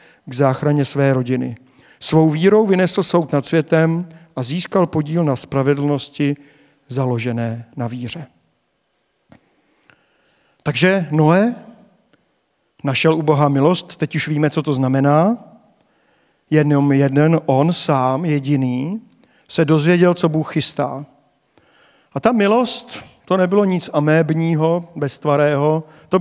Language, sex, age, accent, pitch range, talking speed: Czech, male, 50-69, native, 145-180 Hz, 115 wpm